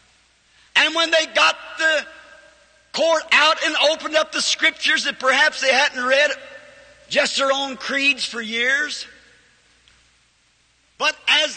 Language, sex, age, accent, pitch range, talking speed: English, male, 50-69, American, 265-315 Hz, 130 wpm